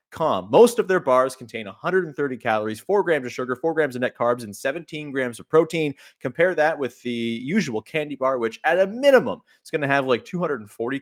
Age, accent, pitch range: 30-49, American, 120-170 Hz